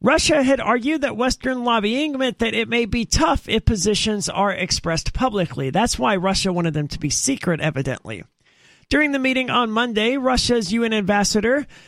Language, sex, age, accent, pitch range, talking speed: English, male, 40-59, American, 175-235 Hz, 170 wpm